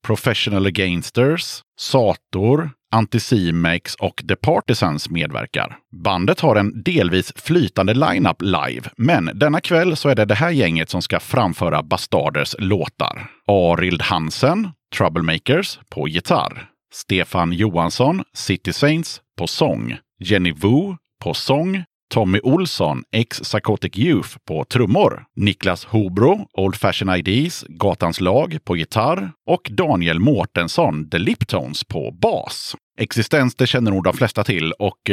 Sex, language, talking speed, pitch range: male, Swedish, 125 wpm, 95-140 Hz